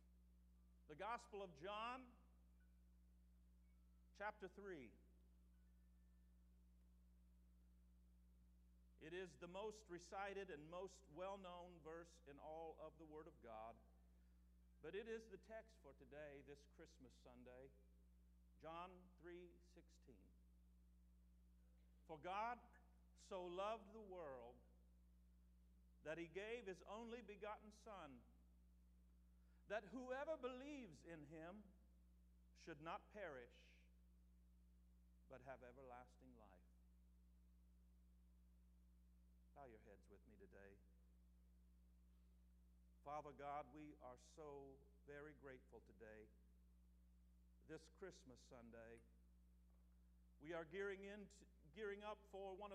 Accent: American